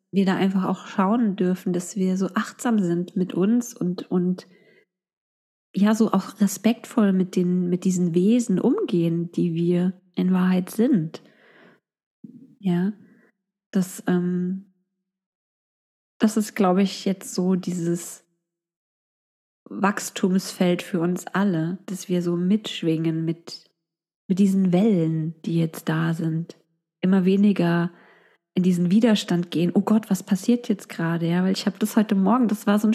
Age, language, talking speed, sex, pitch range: 20-39, German, 140 wpm, female, 175-225 Hz